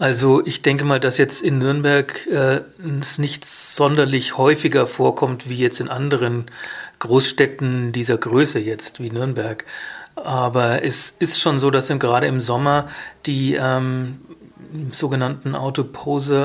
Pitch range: 125-145 Hz